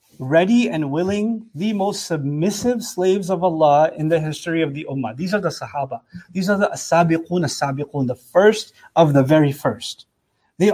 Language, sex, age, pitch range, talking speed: English, male, 30-49, 155-190 Hz, 175 wpm